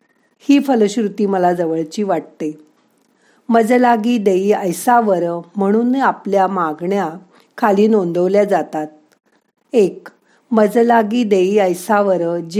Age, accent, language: 50-69, native, Marathi